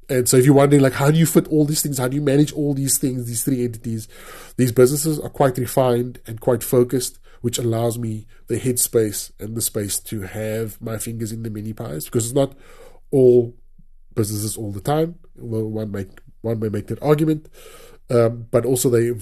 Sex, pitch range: male, 105-125 Hz